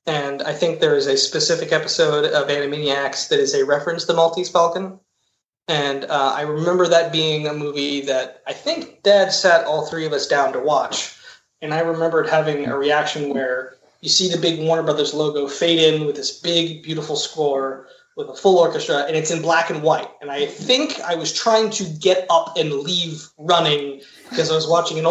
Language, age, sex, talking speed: English, 20-39, male, 205 wpm